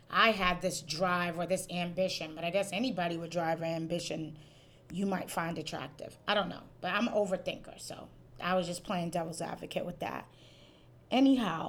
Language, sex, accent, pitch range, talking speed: English, female, American, 170-195 Hz, 185 wpm